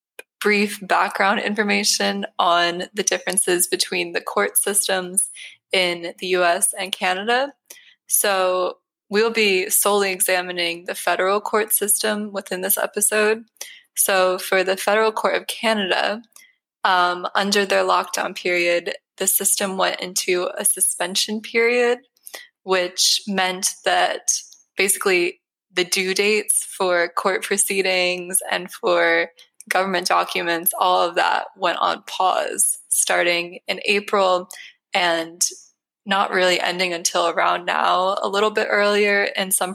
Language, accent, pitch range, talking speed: English, American, 185-215 Hz, 125 wpm